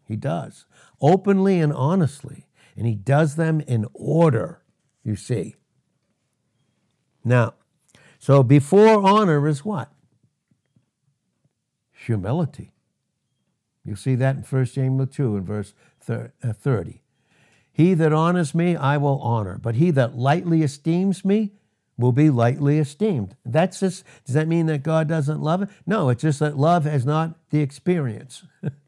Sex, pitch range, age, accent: male, 135-180 Hz, 60-79, American